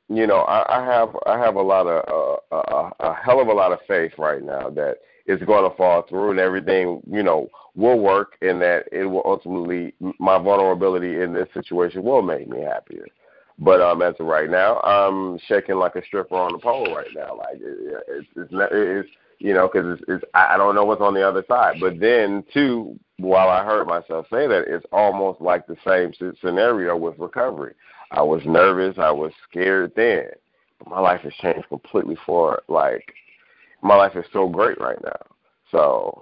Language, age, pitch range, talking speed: English, 40-59, 85-110 Hz, 205 wpm